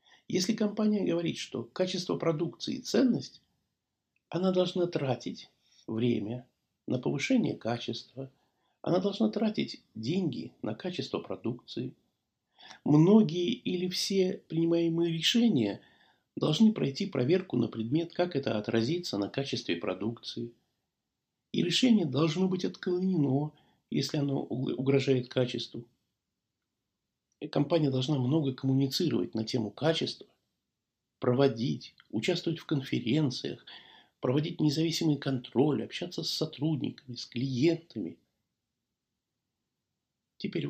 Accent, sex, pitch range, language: native, male, 120-170 Hz, Russian